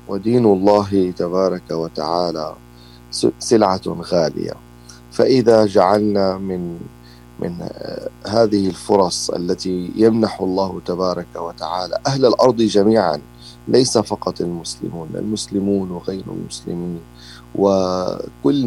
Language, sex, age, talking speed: Arabic, male, 40-59, 85 wpm